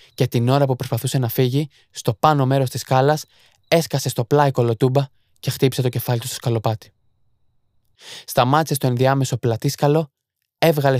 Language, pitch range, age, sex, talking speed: Greek, 120-140 Hz, 20-39, male, 155 wpm